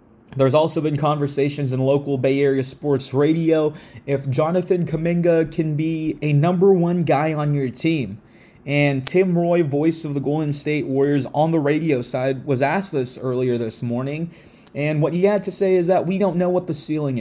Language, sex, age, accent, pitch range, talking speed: English, male, 20-39, American, 140-175 Hz, 190 wpm